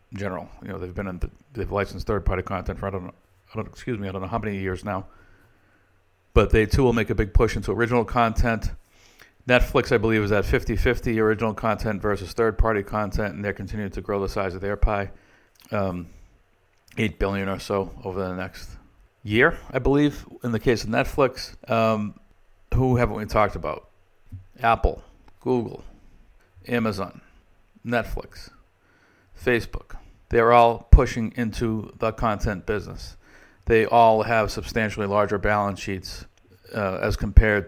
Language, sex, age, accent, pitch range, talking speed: English, male, 60-79, American, 95-110 Hz, 165 wpm